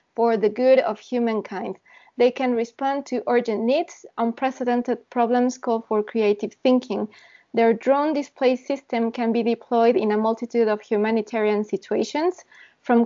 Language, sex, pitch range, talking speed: Spanish, female, 225-255 Hz, 145 wpm